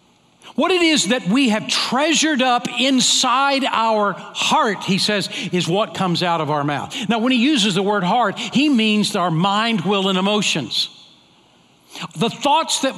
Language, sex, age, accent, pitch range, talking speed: English, male, 60-79, American, 195-250 Hz, 170 wpm